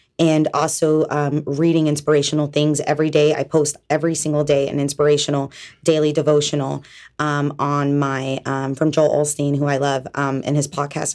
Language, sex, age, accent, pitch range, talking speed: English, female, 20-39, American, 140-155 Hz, 165 wpm